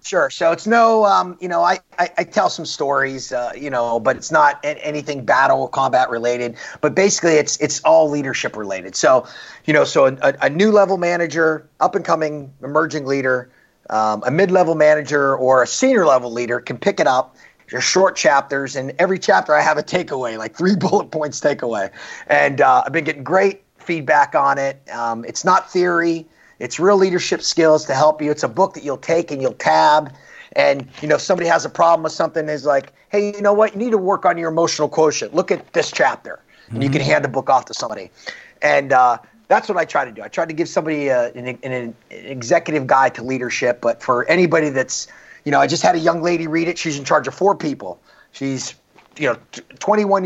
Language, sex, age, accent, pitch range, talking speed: English, male, 30-49, American, 135-175 Hz, 220 wpm